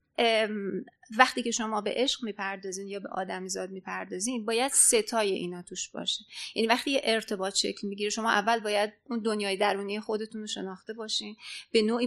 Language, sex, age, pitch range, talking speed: Persian, female, 30-49, 200-260 Hz, 165 wpm